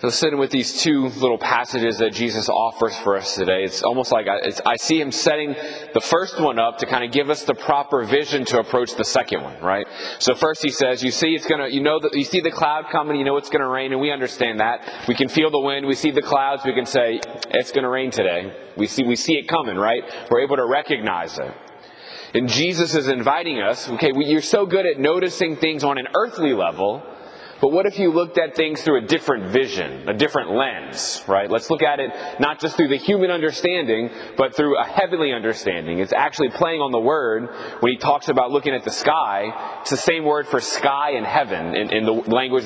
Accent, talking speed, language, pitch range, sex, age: American, 235 wpm, English, 125-160 Hz, male, 30-49